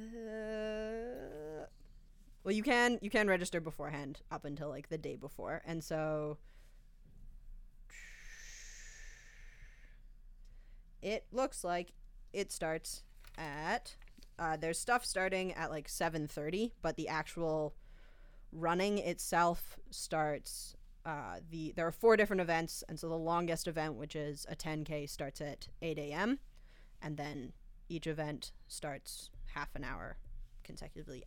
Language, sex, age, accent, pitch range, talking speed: English, female, 20-39, American, 150-175 Hz, 125 wpm